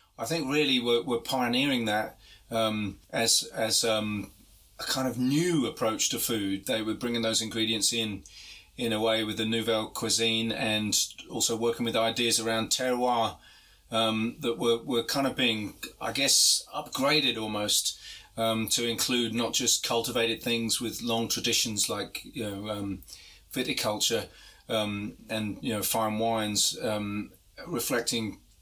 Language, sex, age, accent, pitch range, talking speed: English, male, 30-49, British, 110-125 Hz, 150 wpm